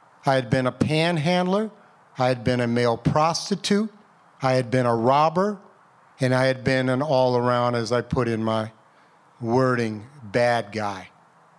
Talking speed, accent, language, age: 160 wpm, American, English, 50-69